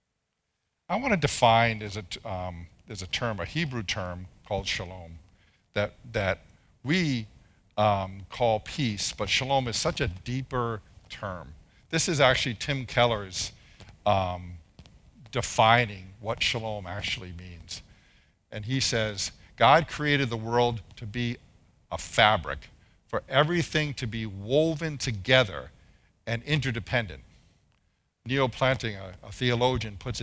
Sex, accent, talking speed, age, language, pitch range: male, American, 125 wpm, 50-69, English, 95-130 Hz